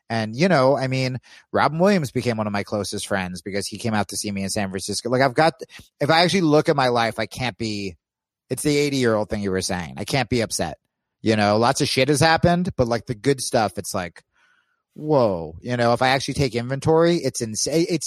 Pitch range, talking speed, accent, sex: 105-155 Hz, 245 wpm, American, male